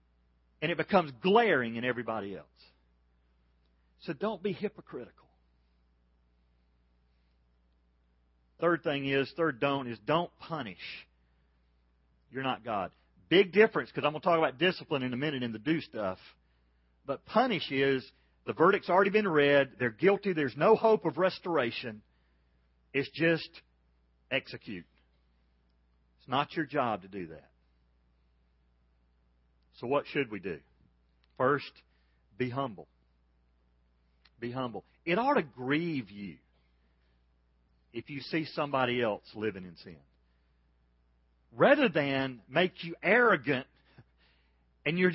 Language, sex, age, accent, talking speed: English, male, 40-59, American, 125 wpm